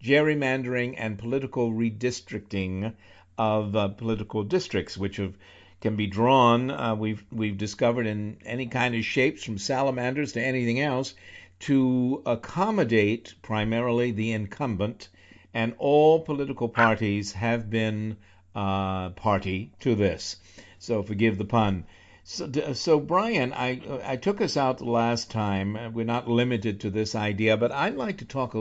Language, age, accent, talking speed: English, 60-79, American, 140 wpm